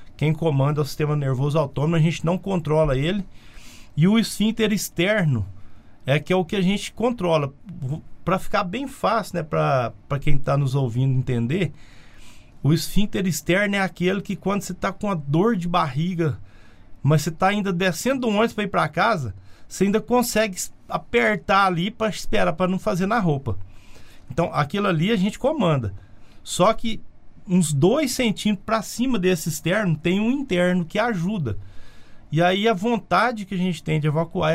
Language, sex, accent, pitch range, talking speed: Portuguese, male, Brazilian, 145-200 Hz, 175 wpm